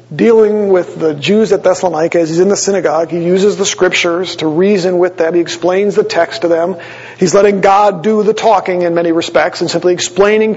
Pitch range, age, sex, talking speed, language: 160-195 Hz, 40-59, male, 210 wpm, English